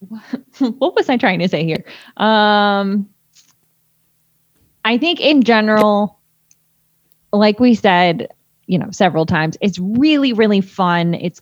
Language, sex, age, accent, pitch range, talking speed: English, female, 20-39, American, 170-220 Hz, 125 wpm